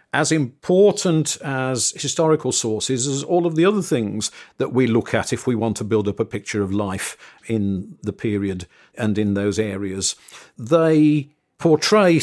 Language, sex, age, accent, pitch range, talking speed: English, male, 50-69, British, 110-150 Hz, 165 wpm